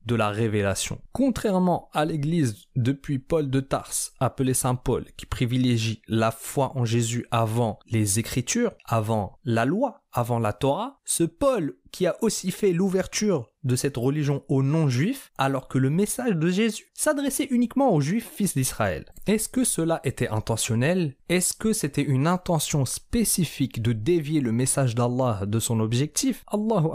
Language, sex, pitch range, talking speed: French, male, 120-175 Hz, 160 wpm